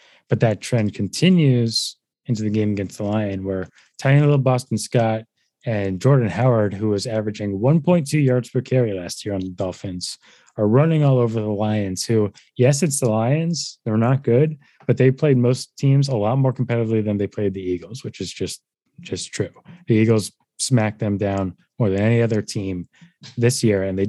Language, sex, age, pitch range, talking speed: English, male, 20-39, 105-130 Hz, 190 wpm